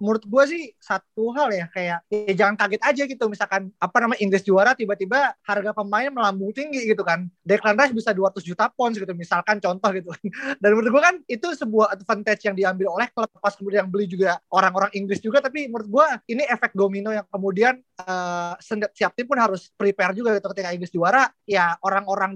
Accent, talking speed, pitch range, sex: native, 190 wpm, 185-225 Hz, male